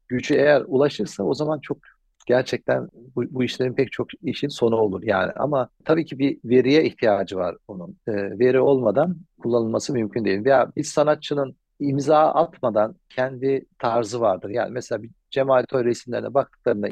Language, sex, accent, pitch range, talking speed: English, male, Turkish, 120-145 Hz, 155 wpm